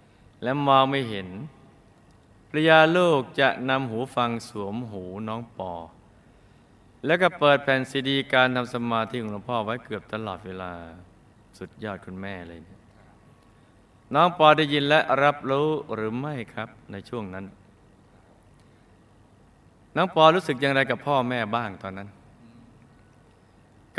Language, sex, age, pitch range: Thai, male, 20-39, 105-140 Hz